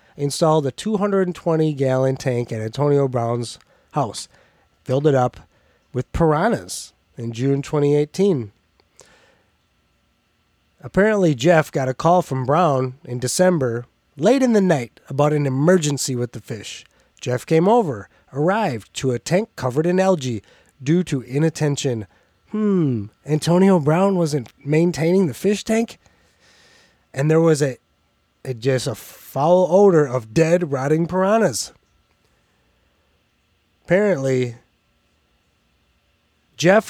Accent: American